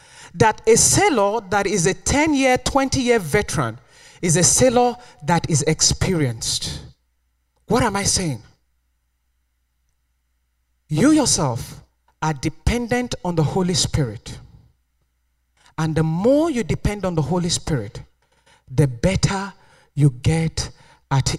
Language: English